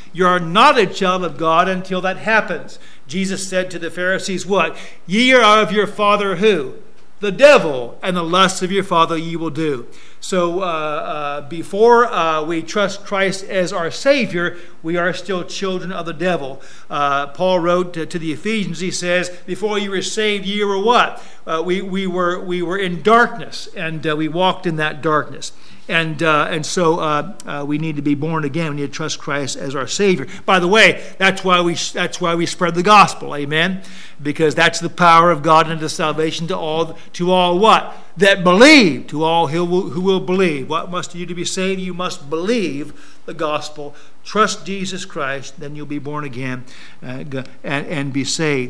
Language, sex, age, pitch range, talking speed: English, male, 50-69, 155-190 Hz, 200 wpm